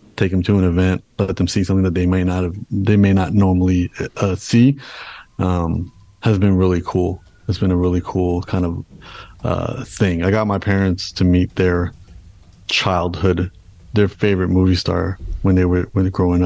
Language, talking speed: English, 185 wpm